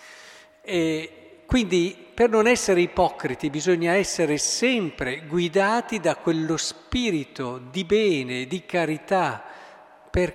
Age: 50-69